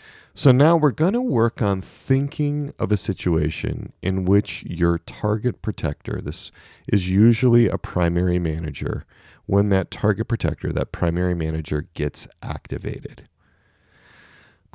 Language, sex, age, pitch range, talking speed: English, male, 40-59, 90-120 Hz, 130 wpm